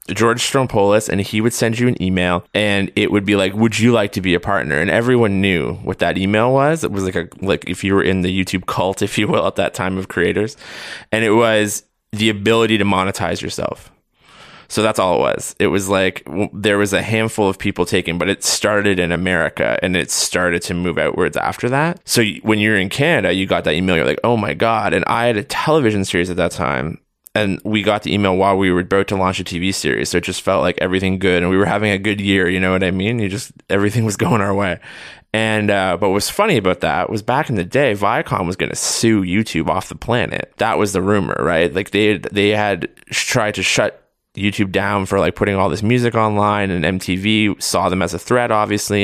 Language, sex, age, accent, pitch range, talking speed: English, male, 20-39, American, 95-110 Hz, 240 wpm